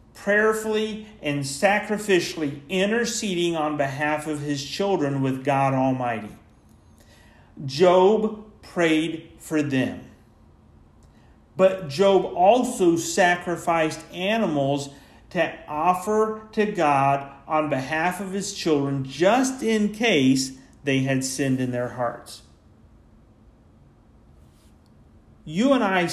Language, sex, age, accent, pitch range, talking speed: English, male, 40-59, American, 135-205 Hz, 95 wpm